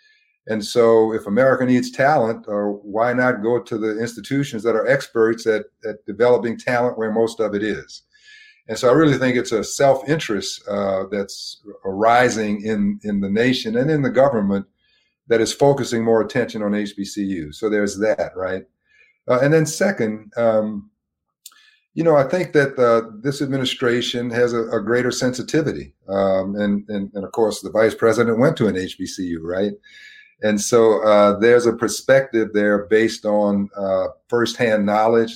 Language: English